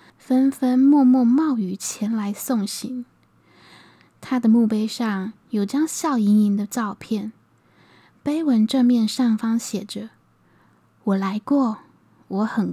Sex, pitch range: female, 210-255 Hz